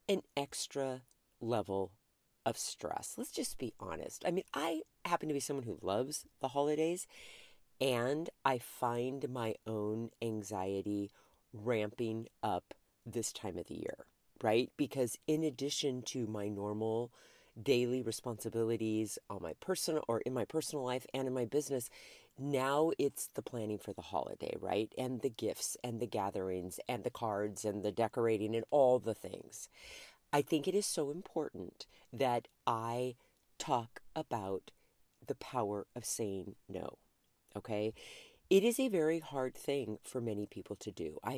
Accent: American